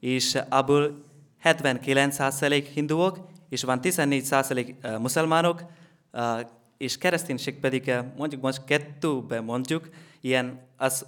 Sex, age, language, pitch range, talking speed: male, 20-39, Hungarian, 125-150 Hz, 95 wpm